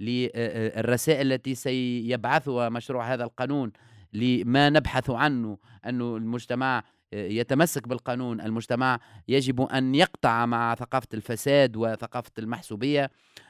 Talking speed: 100 wpm